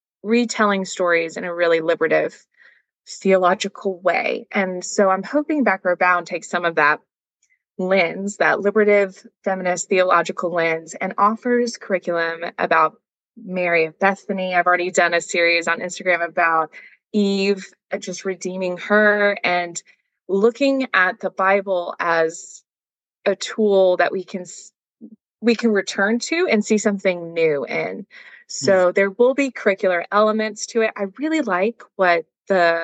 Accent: American